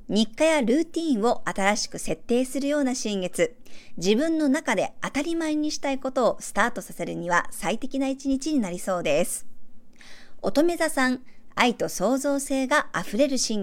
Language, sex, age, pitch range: Japanese, male, 50-69, 195-280 Hz